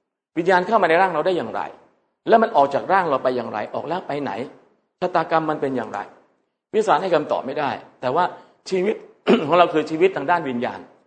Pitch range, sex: 130-185 Hz, male